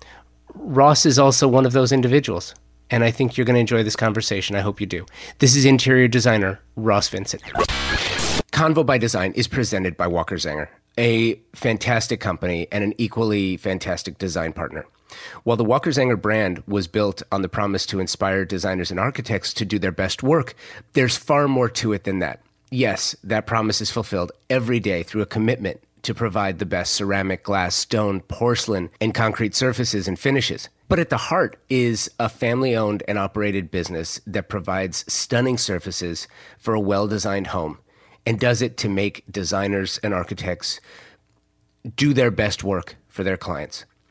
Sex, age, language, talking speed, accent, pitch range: male, 30-49, English, 175 wpm, American, 95-115 Hz